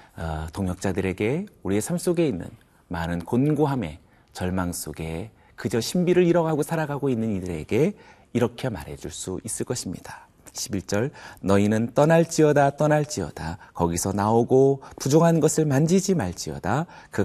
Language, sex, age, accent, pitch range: Korean, male, 40-59, native, 90-150 Hz